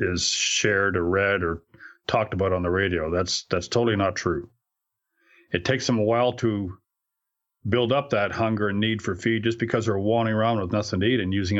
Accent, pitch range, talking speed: American, 95-125 Hz, 205 wpm